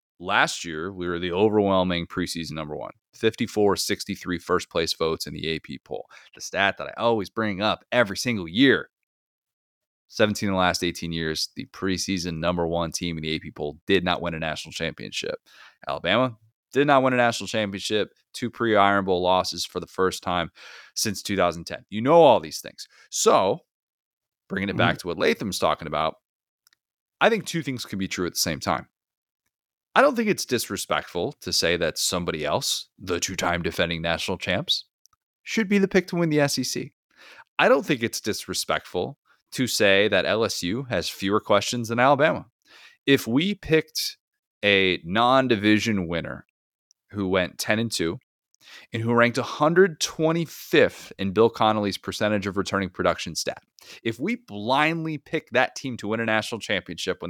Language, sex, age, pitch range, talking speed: English, male, 30-49, 90-125 Hz, 170 wpm